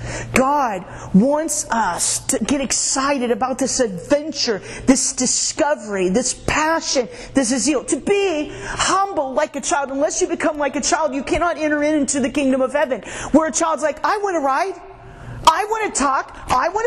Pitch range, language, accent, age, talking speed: 275-375 Hz, English, American, 40-59, 175 wpm